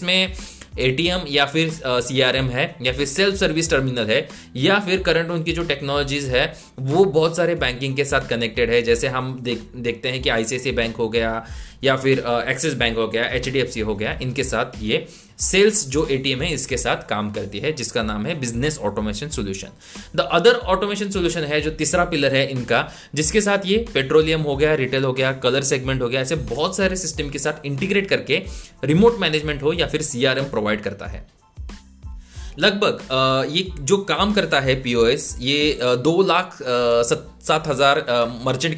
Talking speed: 185 wpm